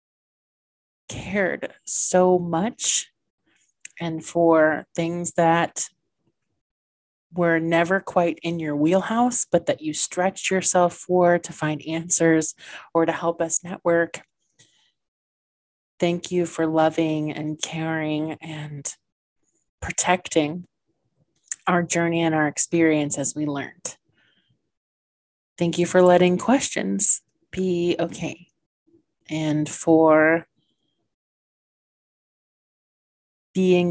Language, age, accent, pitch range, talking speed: English, 30-49, American, 155-180 Hz, 95 wpm